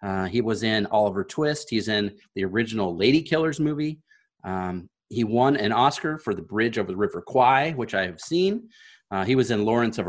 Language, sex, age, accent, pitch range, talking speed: English, male, 30-49, American, 105-135 Hz, 210 wpm